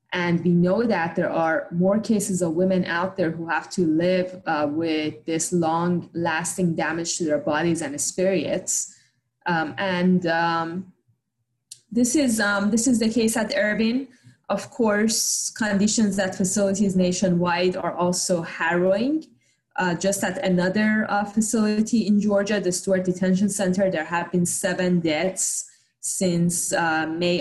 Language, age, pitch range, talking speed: English, 20-39, 160-195 Hz, 145 wpm